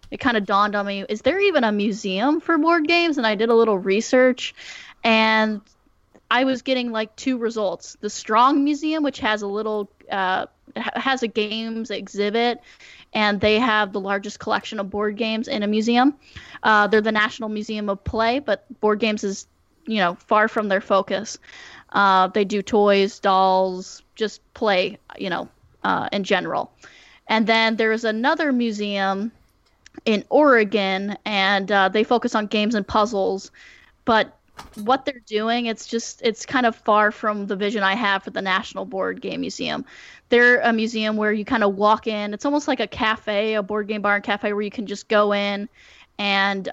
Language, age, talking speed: English, 10-29, 185 wpm